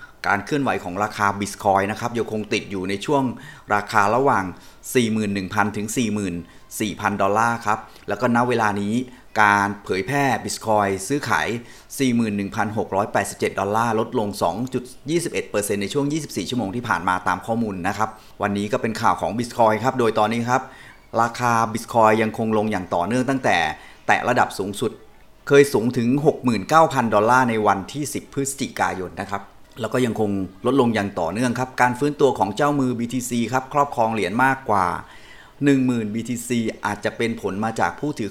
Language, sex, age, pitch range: Thai, male, 30-49, 100-125 Hz